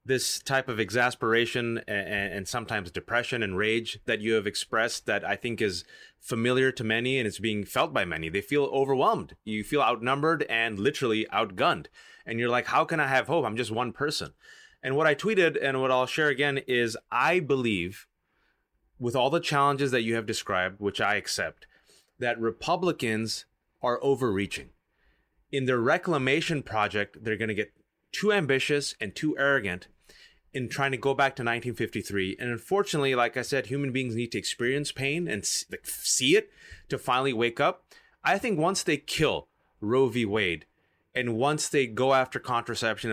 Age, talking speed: 30-49, 175 wpm